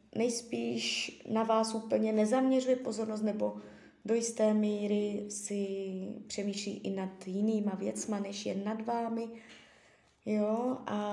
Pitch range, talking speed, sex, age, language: 210-245 Hz, 120 wpm, female, 20-39, Czech